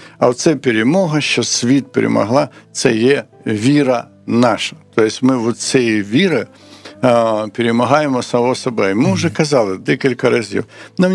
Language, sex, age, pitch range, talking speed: Ukrainian, male, 60-79, 110-135 Hz, 130 wpm